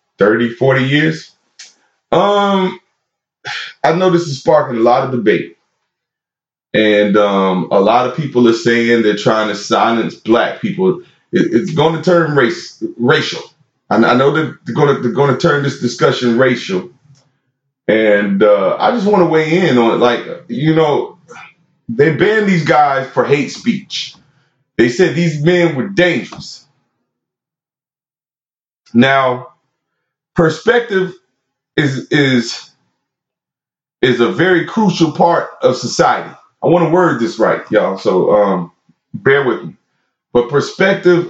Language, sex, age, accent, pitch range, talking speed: English, male, 30-49, American, 120-175 Hz, 140 wpm